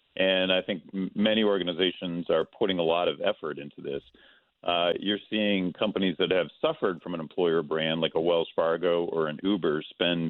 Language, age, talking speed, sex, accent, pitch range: English, 40-59, 185 wpm, male, American, 85-105 Hz